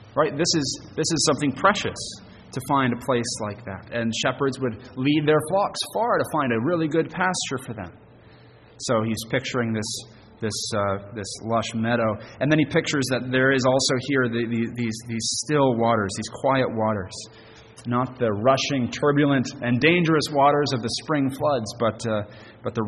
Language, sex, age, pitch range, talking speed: English, male, 30-49, 110-135 Hz, 185 wpm